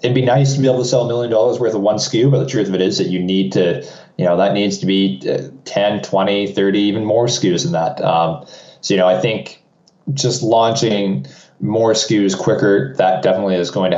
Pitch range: 95-115 Hz